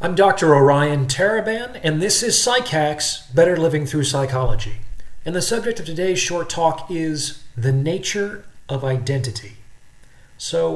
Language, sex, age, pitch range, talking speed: English, male, 40-59, 130-165 Hz, 140 wpm